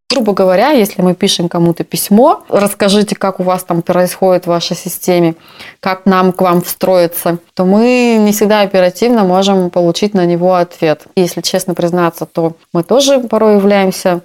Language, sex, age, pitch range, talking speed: Russian, female, 20-39, 175-205 Hz, 165 wpm